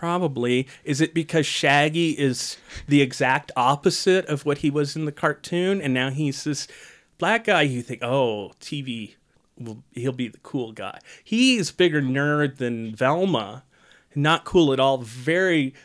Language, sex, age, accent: English, male, 30-49, American